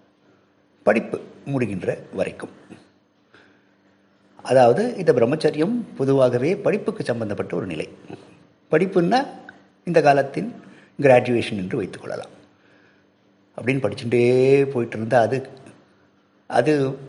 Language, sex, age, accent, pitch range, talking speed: Tamil, male, 50-69, native, 100-135 Hz, 80 wpm